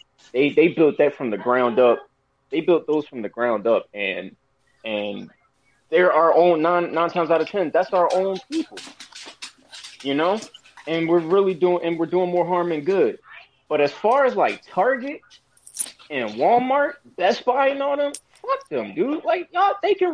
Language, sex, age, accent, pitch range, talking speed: English, male, 20-39, American, 135-195 Hz, 190 wpm